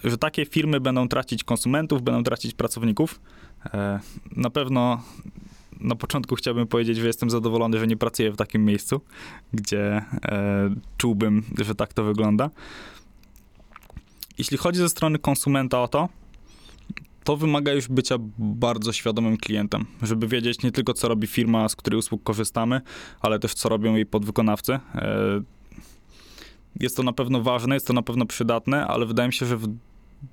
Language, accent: Polish, native